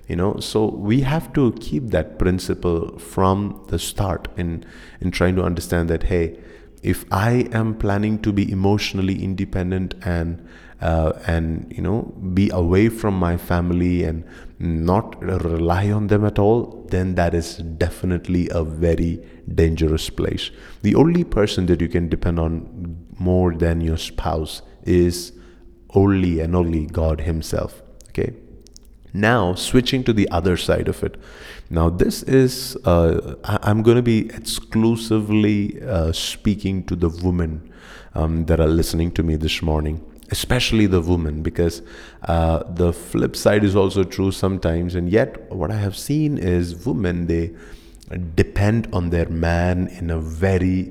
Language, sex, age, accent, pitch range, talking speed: English, male, 30-49, Indian, 85-100 Hz, 150 wpm